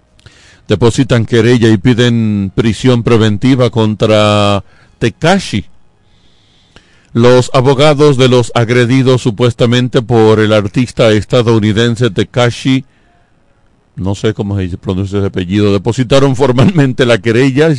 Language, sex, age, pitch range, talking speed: Spanish, male, 50-69, 105-130 Hz, 105 wpm